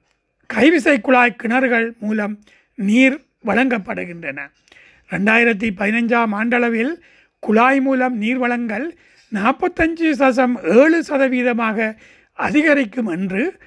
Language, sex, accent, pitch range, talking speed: Tamil, male, native, 225-270 Hz, 80 wpm